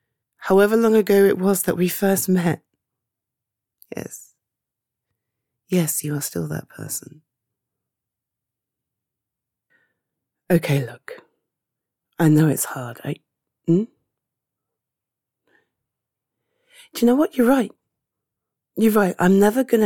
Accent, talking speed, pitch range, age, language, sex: British, 105 wpm, 115-195 Hz, 30-49, English, female